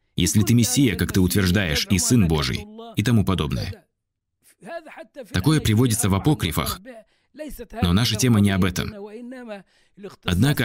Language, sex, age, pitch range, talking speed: Russian, male, 20-39, 95-125 Hz, 130 wpm